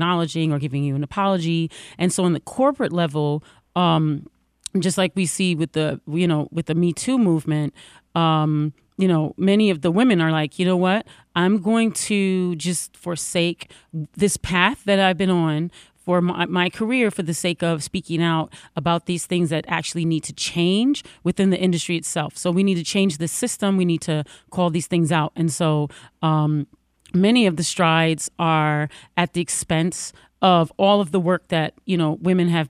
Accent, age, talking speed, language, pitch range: American, 30-49, 195 wpm, English, 160-185 Hz